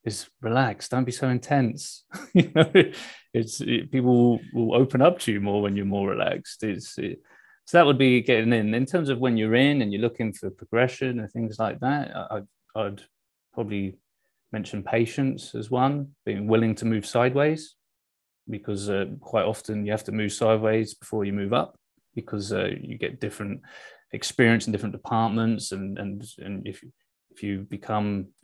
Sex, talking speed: male, 180 wpm